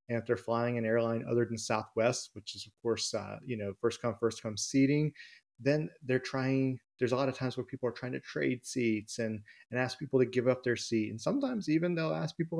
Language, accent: English, American